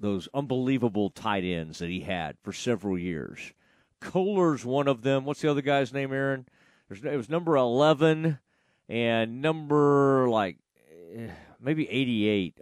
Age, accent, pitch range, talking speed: 50-69, American, 115-160 Hz, 140 wpm